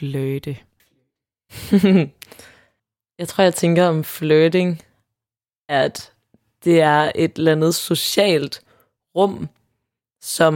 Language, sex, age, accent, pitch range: Danish, female, 20-39, native, 145-175 Hz